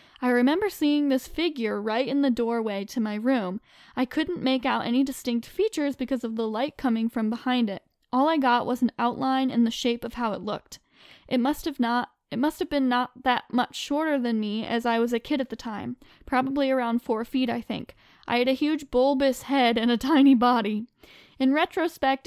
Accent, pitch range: American, 235-275 Hz